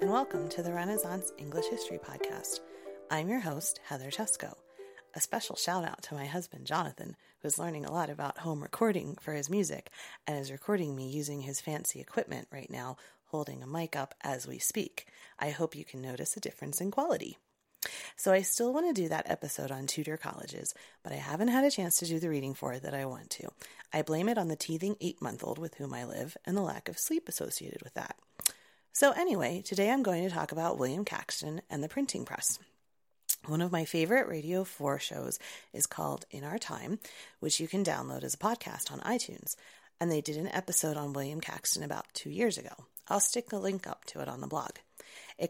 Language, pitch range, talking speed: English, 145-195 Hz, 215 wpm